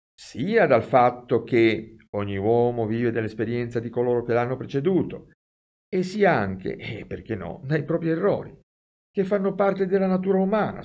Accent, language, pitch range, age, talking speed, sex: native, Italian, 100-155 Hz, 50-69, 160 wpm, male